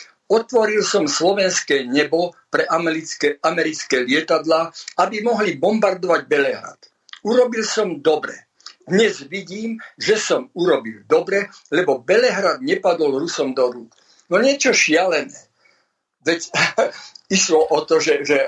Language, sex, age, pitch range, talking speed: Slovak, male, 50-69, 155-215 Hz, 115 wpm